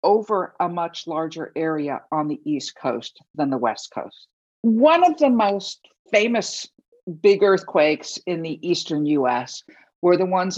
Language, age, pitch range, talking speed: English, 50-69, 155-220 Hz, 155 wpm